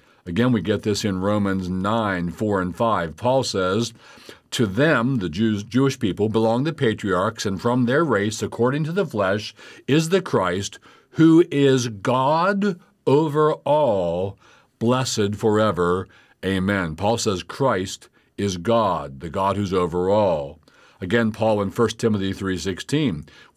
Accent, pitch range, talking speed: American, 95-120 Hz, 145 wpm